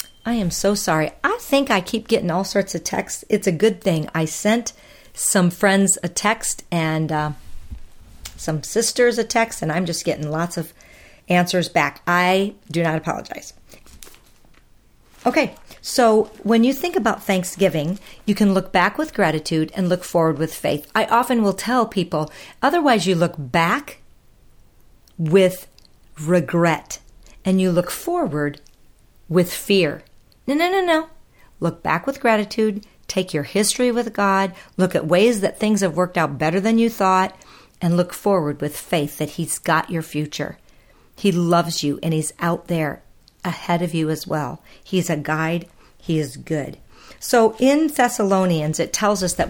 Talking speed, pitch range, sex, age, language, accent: 165 wpm, 160-210 Hz, female, 50-69, English, American